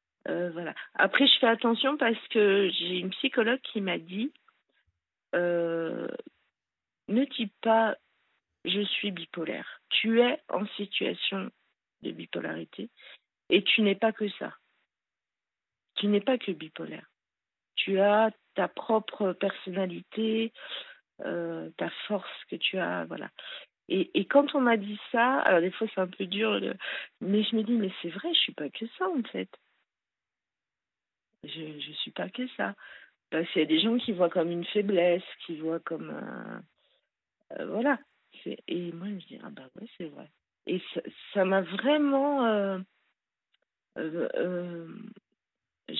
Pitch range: 175-235 Hz